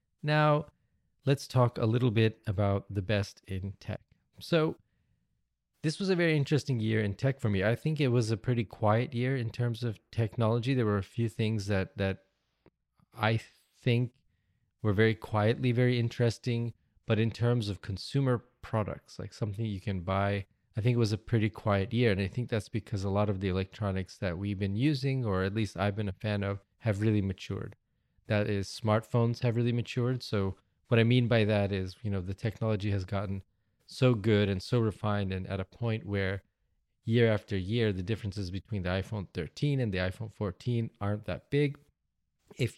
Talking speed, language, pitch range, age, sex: 195 wpm, English, 100-120 Hz, 20-39, male